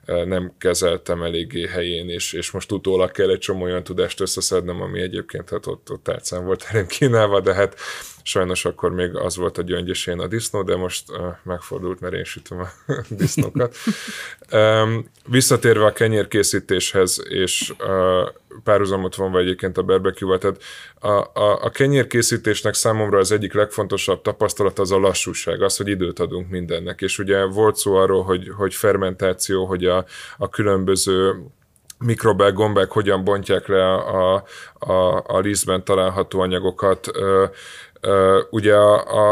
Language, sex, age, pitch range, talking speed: Hungarian, male, 20-39, 90-100 Hz, 150 wpm